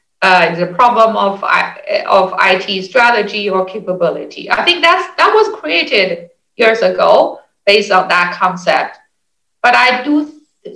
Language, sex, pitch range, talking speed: English, female, 185-230 Hz, 145 wpm